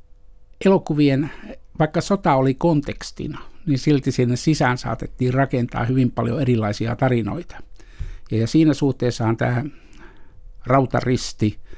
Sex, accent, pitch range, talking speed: male, native, 115-140 Hz, 100 wpm